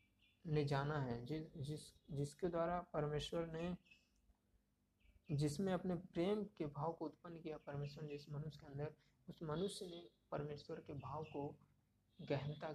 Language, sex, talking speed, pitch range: Hindi, male, 140 wpm, 140-160 Hz